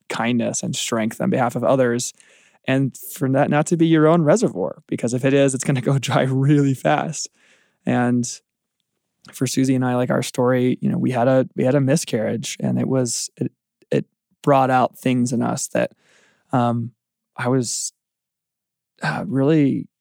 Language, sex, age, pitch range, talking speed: English, male, 20-39, 120-135 Hz, 175 wpm